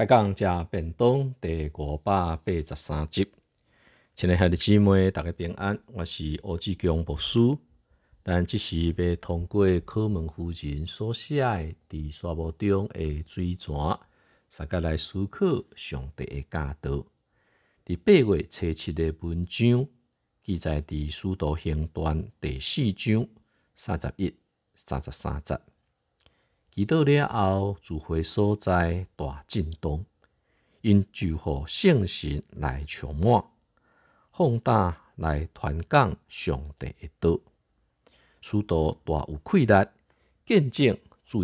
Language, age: Chinese, 50-69